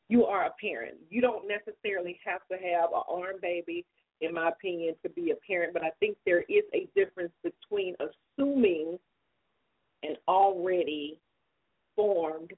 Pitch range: 165-245 Hz